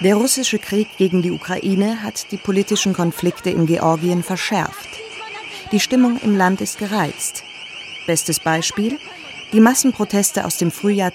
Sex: female